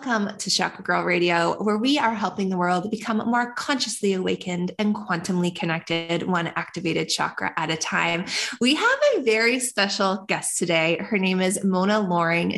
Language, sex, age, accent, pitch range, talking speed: English, female, 20-39, American, 185-240 Hz, 170 wpm